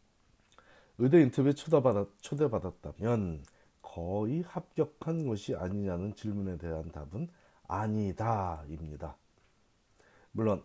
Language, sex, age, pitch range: Korean, male, 40-59, 95-135 Hz